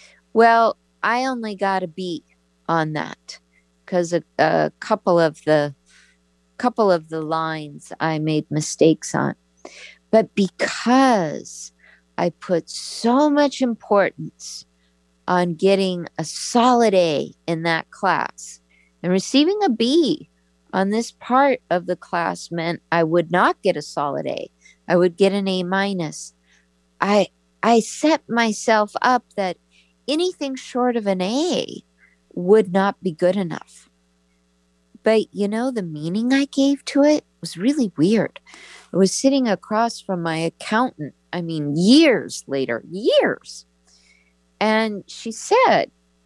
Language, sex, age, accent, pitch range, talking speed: English, female, 50-69, American, 145-225 Hz, 135 wpm